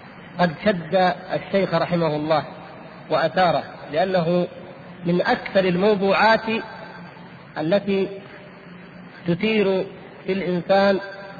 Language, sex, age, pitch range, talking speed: Arabic, male, 50-69, 175-200 Hz, 75 wpm